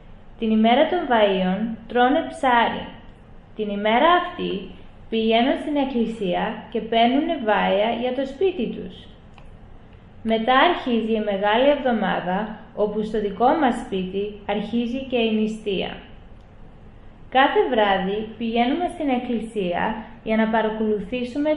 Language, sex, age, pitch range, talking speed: Greek, female, 20-39, 205-250 Hz, 115 wpm